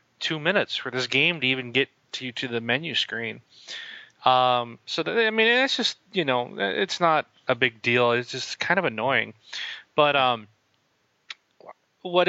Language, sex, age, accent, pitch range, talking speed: English, male, 30-49, American, 120-150 Hz, 170 wpm